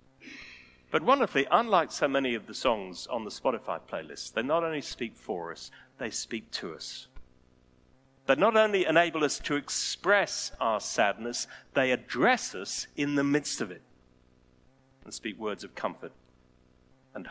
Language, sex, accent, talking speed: English, male, British, 155 wpm